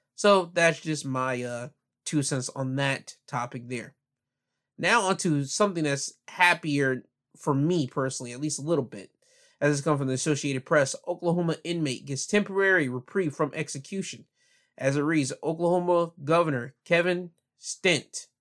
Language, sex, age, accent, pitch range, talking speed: English, male, 20-39, American, 130-170 Hz, 150 wpm